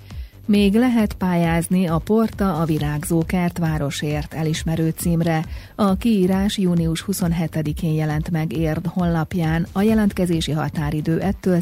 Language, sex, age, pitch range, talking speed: Hungarian, female, 40-59, 145-185 Hz, 115 wpm